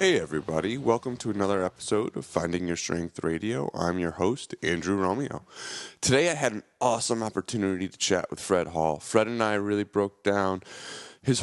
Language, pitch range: English, 90-120 Hz